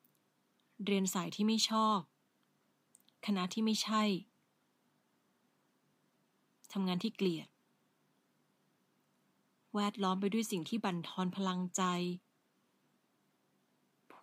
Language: Thai